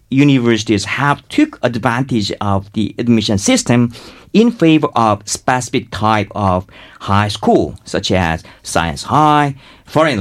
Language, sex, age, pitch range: Korean, male, 50-69, 105-155 Hz